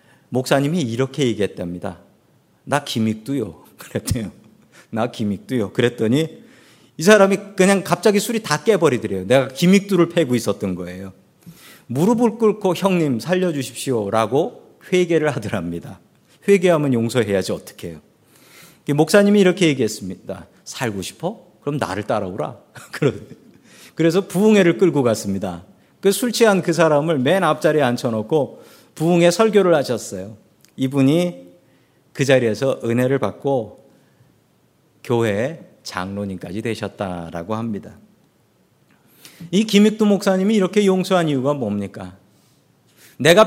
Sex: male